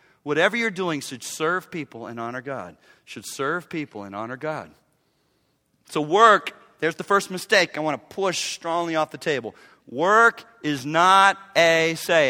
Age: 40-59